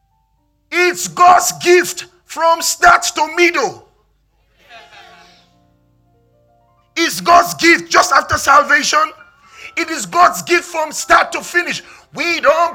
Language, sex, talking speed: English, male, 110 wpm